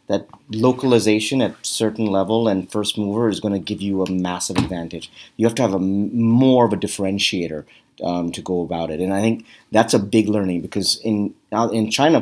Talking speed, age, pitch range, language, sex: 205 wpm, 30-49, 100-120 Hz, English, male